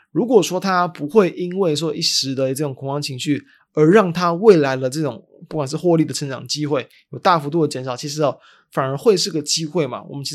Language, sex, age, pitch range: Chinese, male, 20-39, 145-175 Hz